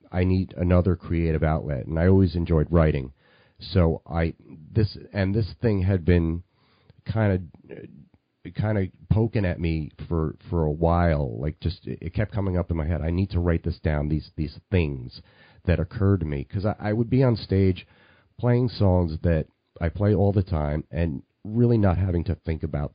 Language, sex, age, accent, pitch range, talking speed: English, male, 40-59, American, 85-105 Hz, 190 wpm